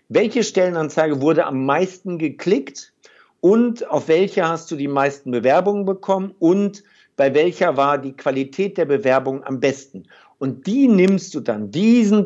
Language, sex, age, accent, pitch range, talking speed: German, male, 60-79, German, 135-175 Hz, 150 wpm